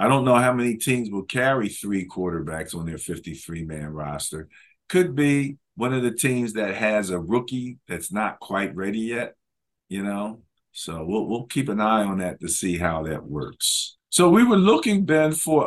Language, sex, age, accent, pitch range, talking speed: English, male, 50-69, American, 95-140 Hz, 190 wpm